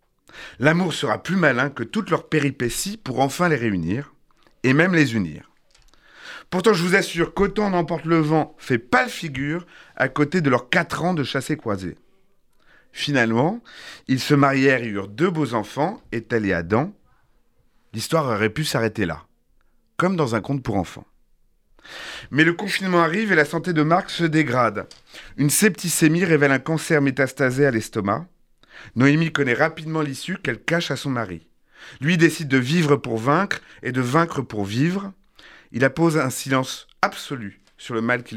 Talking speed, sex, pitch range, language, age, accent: 165 wpm, male, 120-170 Hz, French, 30-49, French